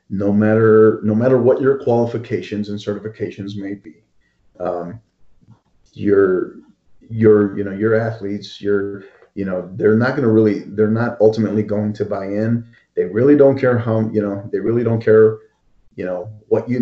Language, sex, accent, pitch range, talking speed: English, male, American, 100-115 Hz, 170 wpm